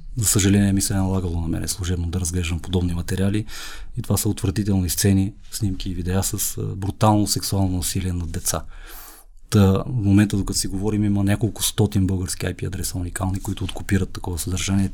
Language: Bulgarian